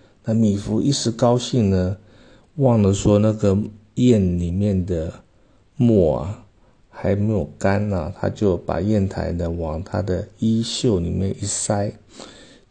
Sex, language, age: male, Chinese, 50-69